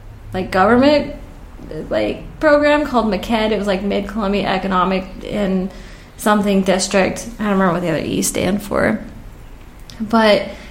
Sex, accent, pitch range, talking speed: female, American, 200-245 Hz, 135 wpm